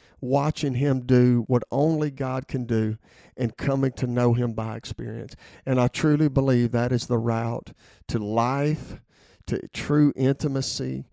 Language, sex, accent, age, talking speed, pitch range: English, male, American, 50-69, 150 wpm, 115-140 Hz